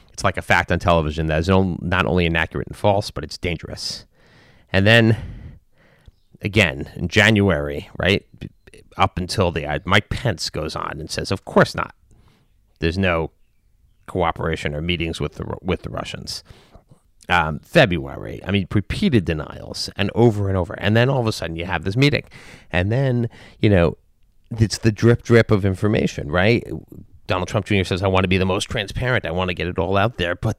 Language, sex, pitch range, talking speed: English, male, 85-110 Hz, 185 wpm